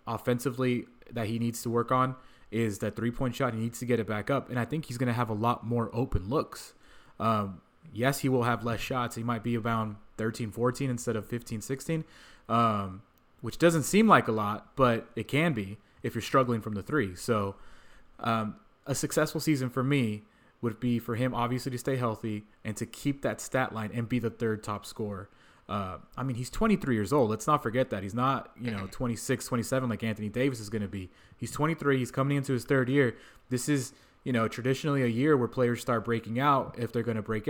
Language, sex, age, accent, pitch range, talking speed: English, male, 20-39, American, 110-130 Hz, 220 wpm